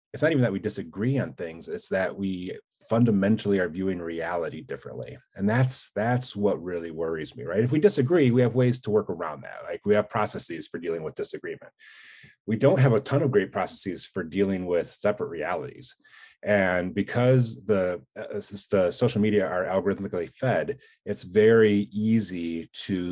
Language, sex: English, male